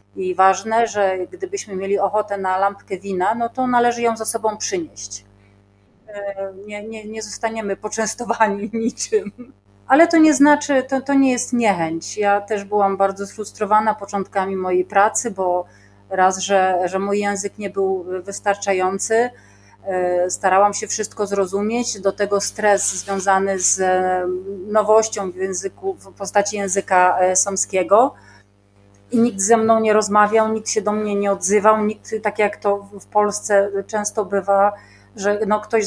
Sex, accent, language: female, native, Polish